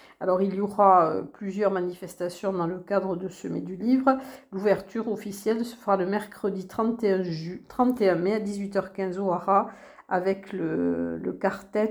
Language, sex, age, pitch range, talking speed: French, female, 50-69, 190-230 Hz, 145 wpm